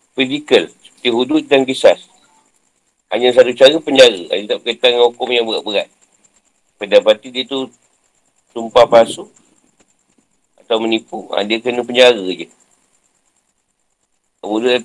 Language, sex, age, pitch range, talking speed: Malay, male, 50-69, 125-155 Hz, 120 wpm